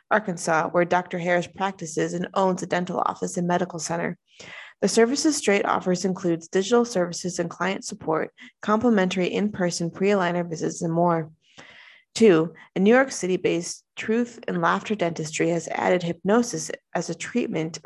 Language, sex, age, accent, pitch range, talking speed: English, female, 20-39, American, 170-215 Hz, 150 wpm